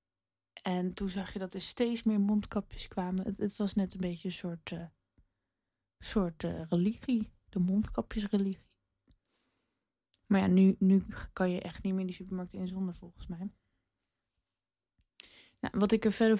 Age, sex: 20-39, female